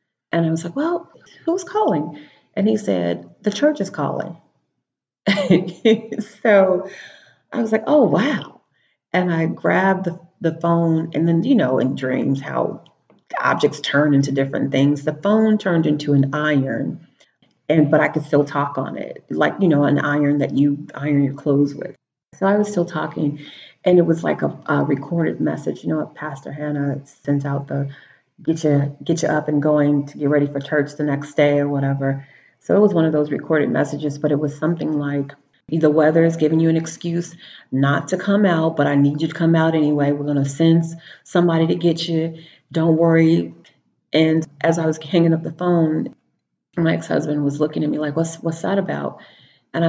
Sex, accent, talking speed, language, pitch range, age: female, American, 190 wpm, English, 145-175 Hz, 40-59